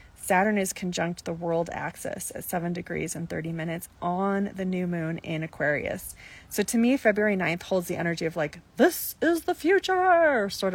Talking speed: 185 wpm